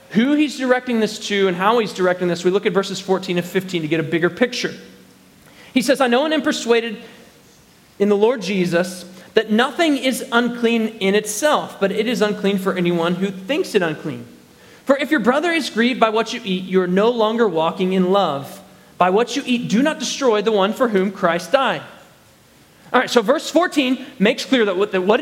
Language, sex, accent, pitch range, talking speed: English, male, American, 195-255 Hz, 210 wpm